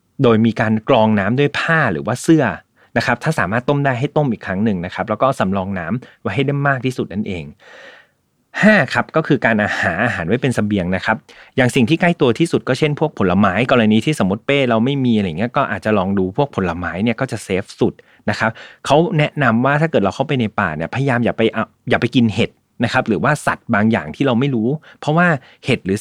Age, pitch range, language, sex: 20-39, 100-135 Hz, Thai, male